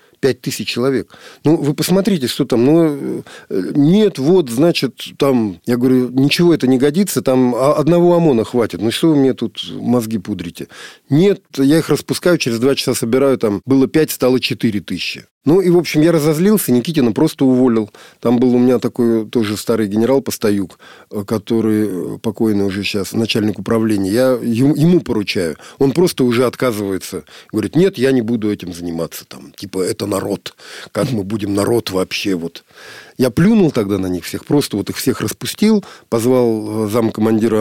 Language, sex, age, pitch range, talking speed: Russian, male, 50-69, 105-145 Hz, 165 wpm